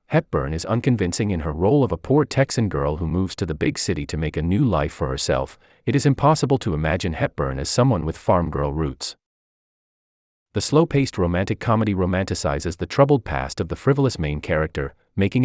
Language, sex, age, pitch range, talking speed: English, male, 30-49, 75-105 Hz, 195 wpm